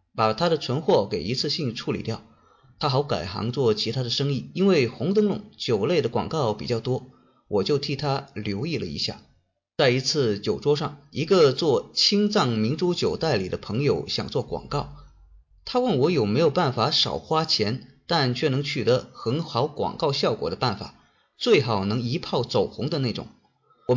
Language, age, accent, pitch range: Chinese, 30-49, native, 115-165 Hz